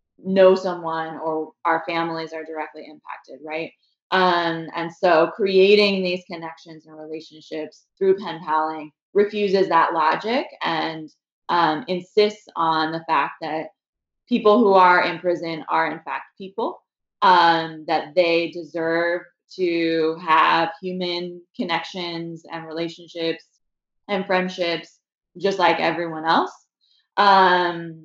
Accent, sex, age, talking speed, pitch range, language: American, female, 20-39, 120 wpm, 160-185 Hz, English